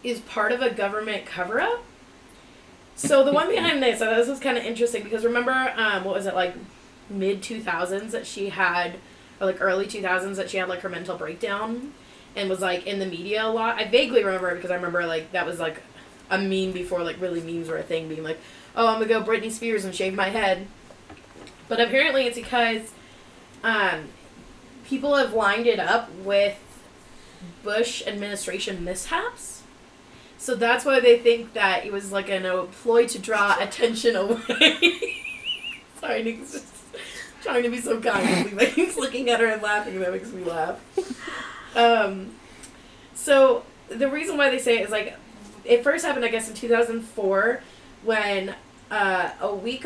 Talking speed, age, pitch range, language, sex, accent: 185 wpm, 20-39, 190-240 Hz, English, female, American